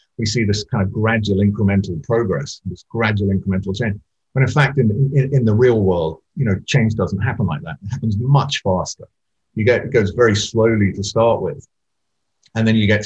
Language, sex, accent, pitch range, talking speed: English, male, British, 100-120 Hz, 205 wpm